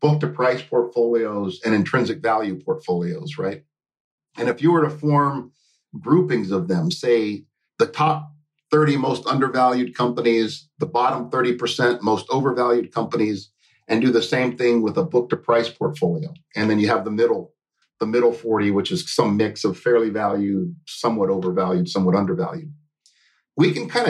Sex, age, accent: male, 50-69, American